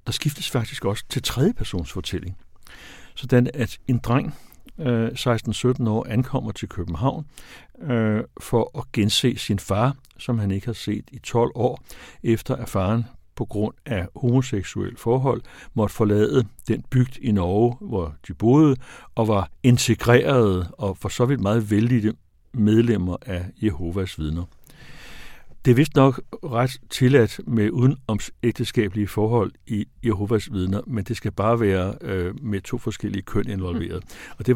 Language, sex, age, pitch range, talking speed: Danish, male, 60-79, 100-125 Hz, 145 wpm